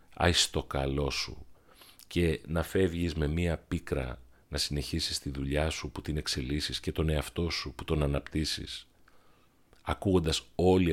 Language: Greek